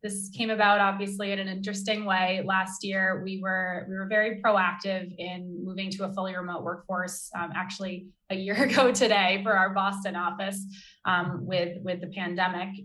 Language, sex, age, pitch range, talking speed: English, female, 20-39, 180-200 Hz, 180 wpm